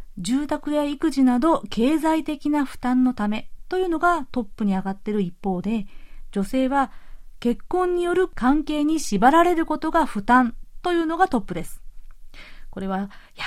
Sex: female